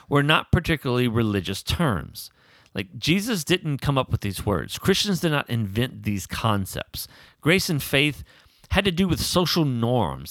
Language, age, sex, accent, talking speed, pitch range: English, 40-59, male, American, 165 wpm, 95-140 Hz